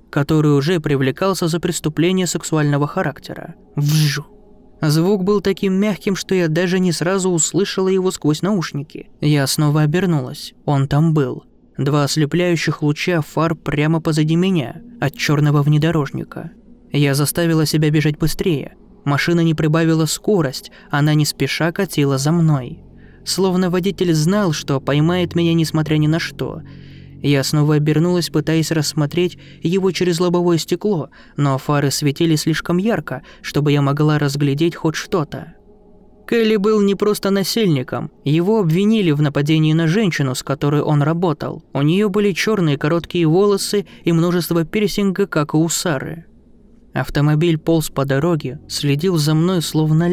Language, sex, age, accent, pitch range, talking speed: Russian, male, 20-39, native, 145-180 Hz, 140 wpm